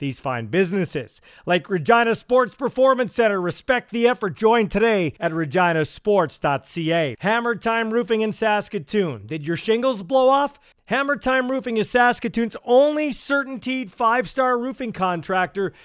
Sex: male